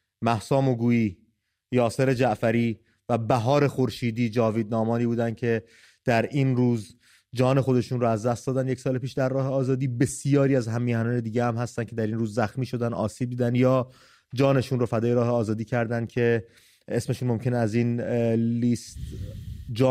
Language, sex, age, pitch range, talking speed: English, male, 30-49, 110-130 Hz, 165 wpm